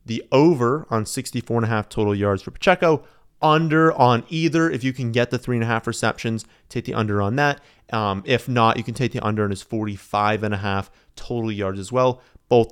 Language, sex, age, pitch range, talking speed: English, male, 30-49, 105-130 Hz, 225 wpm